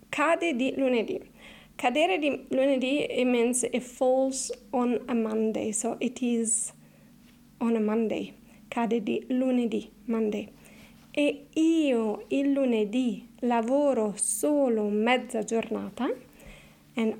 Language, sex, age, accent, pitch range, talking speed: Italian, female, 30-49, native, 220-275 Hz, 110 wpm